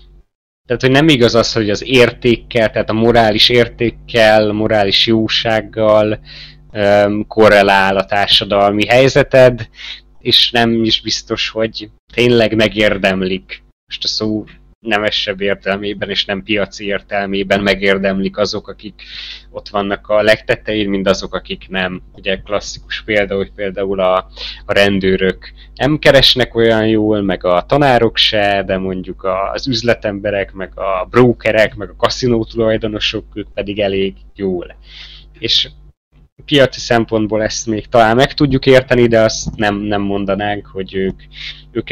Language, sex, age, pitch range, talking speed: Hungarian, male, 20-39, 100-115 Hz, 130 wpm